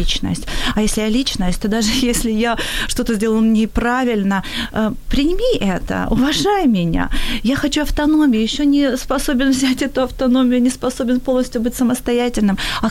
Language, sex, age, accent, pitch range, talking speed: Ukrainian, female, 30-49, native, 200-235 Hz, 150 wpm